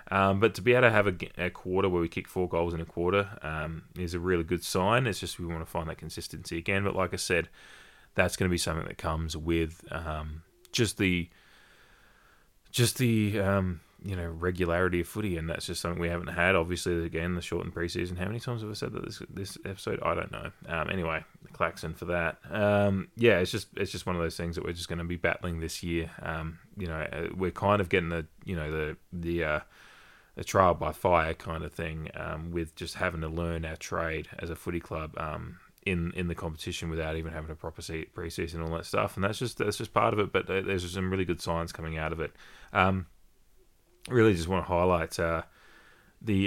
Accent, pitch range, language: Australian, 80-95 Hz, English